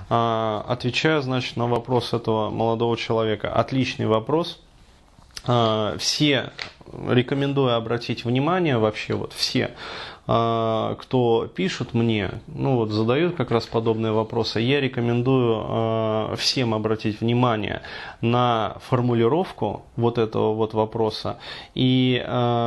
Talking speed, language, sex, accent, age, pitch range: 100 wpm, Russian, male, native, 20-39, 110-130 Hz